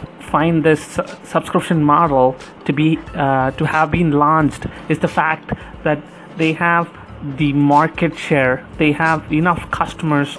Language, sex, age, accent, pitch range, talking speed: English, male, 30-49, Indian, 145-170 Hz, 140 wpm